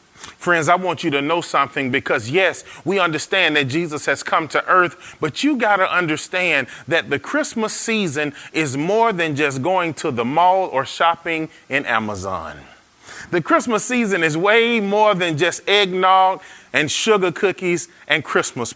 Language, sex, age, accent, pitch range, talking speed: English, male, 30-49, American, 155-210 Hz, 165 wpm